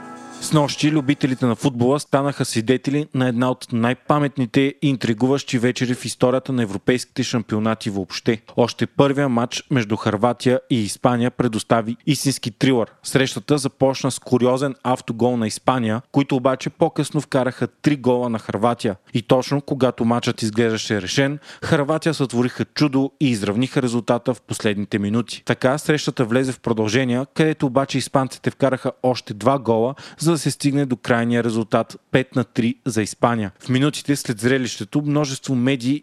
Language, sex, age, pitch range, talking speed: Bulgarian, male, 30-49, 120-140 Hz, 150 wpm